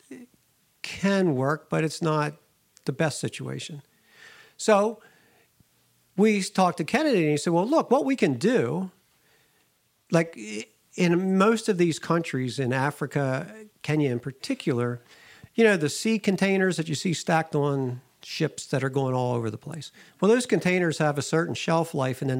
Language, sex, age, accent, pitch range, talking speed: English, male, 50-69, American, 140-185 Hz, 165 wpm